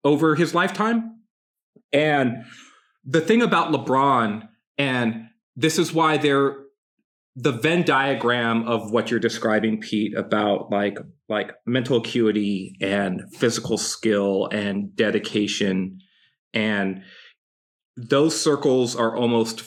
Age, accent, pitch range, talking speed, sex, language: 30-49, American, 110-145 Hz, 110 wpm, male, English